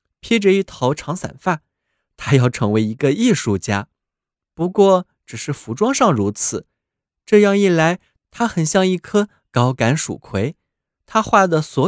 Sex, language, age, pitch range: male, Chinese, 20-39, 115-190 Hz